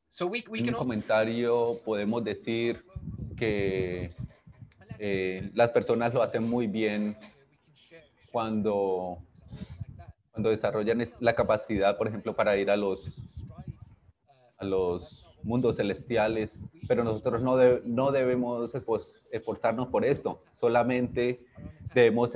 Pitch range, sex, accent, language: 105-125 Hz, male, Colombian, English